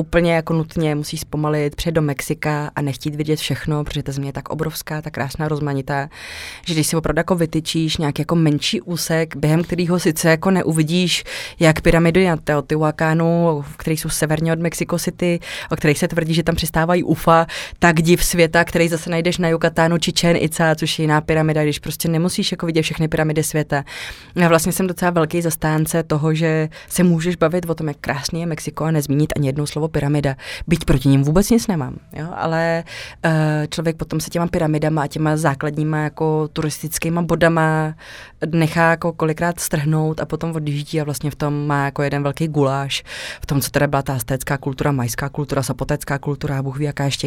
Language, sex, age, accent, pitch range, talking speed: Czech, female, 20-39, native, 150-165 Hz, 195 wpm